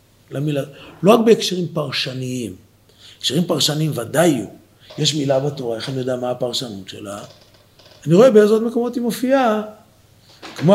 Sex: male